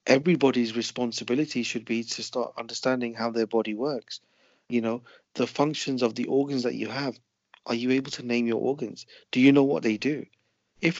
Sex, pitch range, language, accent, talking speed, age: male, 115-130 Hz, English, British, 190 wpm, 40-59